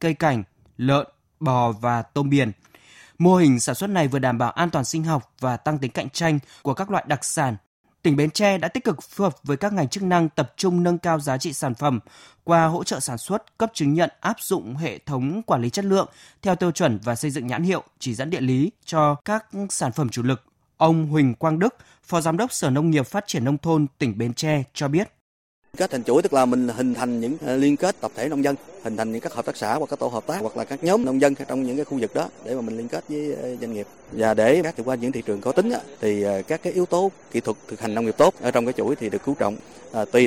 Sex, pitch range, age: male, 120-165 Hz, 20-39